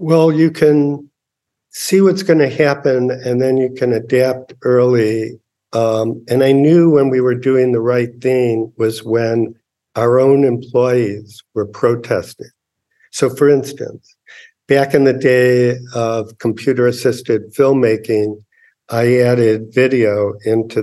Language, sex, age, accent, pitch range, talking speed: English, male, 50-69, American, 110-125 Hz, 135 wpm